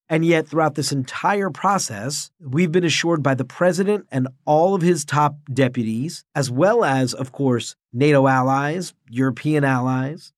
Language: English